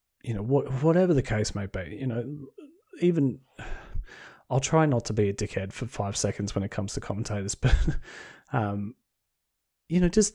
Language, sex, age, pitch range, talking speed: English, male, 30-49, 110-140 Hz, 180 wpm